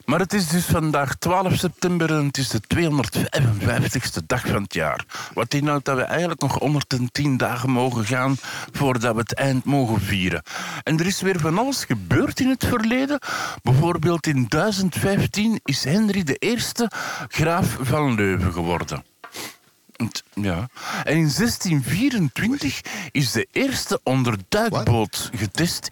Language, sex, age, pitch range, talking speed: Dutch, male, 50-69, 120-175 Hz, 140 wpm